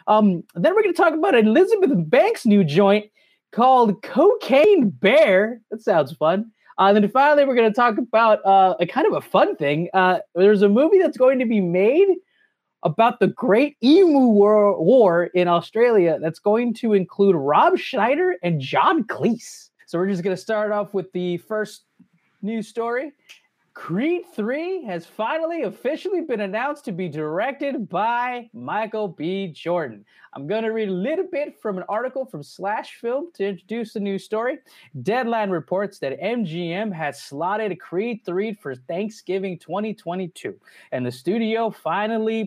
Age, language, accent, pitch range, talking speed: 30-49, English, American, 175-240 Hz, 165 wpm